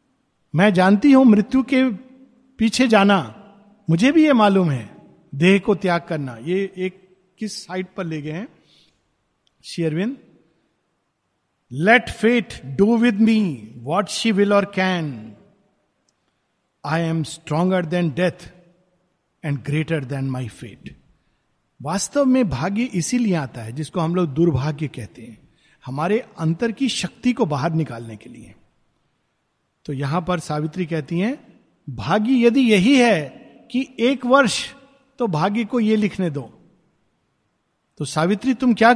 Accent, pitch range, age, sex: native, 155-215 Hz, 50-69, male